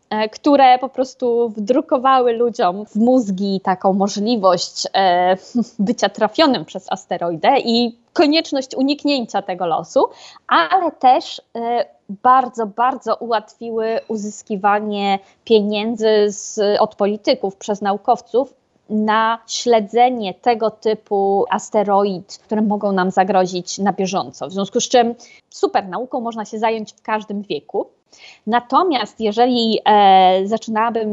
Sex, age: female, 20-39